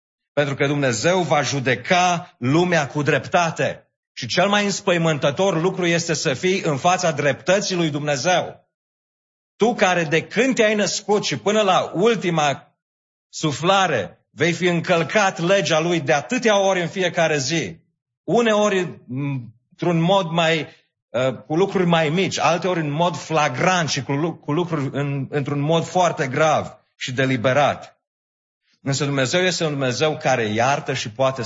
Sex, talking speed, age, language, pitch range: male, 140 wpm, 40-59, English, 125-175 Hz